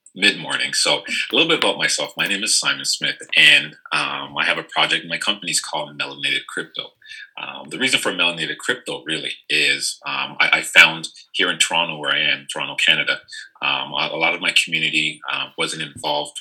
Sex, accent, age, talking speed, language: male, American, 30-49, 200 wpm, English